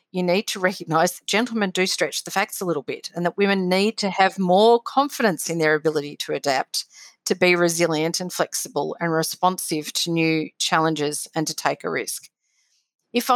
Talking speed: 185 wpm